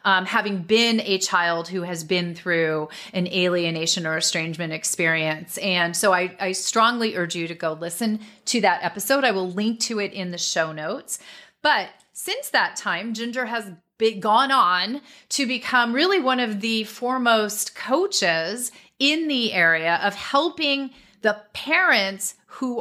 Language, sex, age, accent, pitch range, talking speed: English, female, 30-49, American, 175-235 Hz, 160 wpm